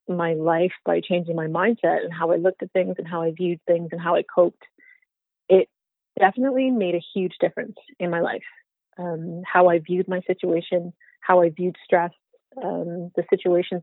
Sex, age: female, 30-49